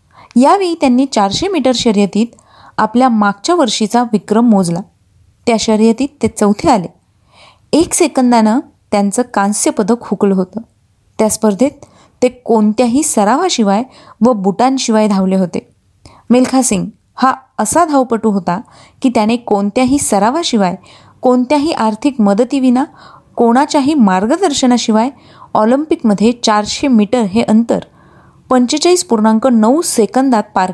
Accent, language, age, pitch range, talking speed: native, Marathi, 30-49, 205-255 Hz, 105 wpm